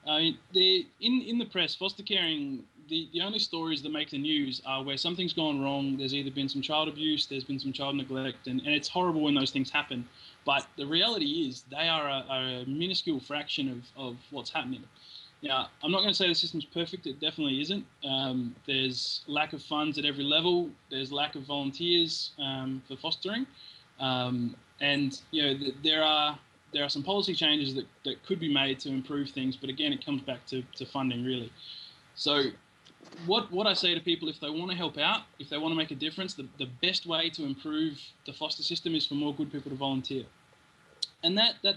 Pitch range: 135-165 Hz